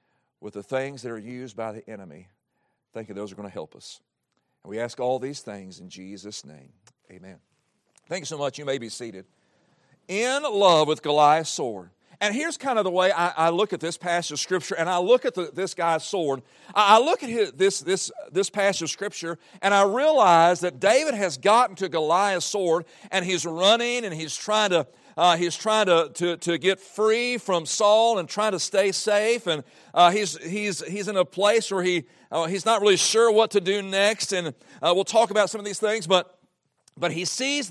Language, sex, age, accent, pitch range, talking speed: English, male, 50-69, American, 165-215 Hz, 215 wpm